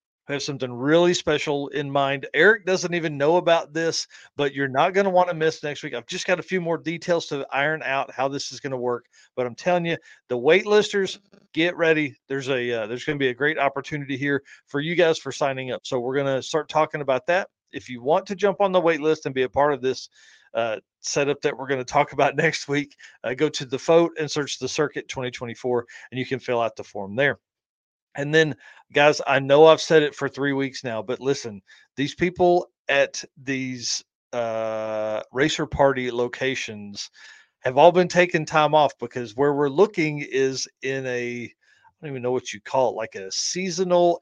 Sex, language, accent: male, English, American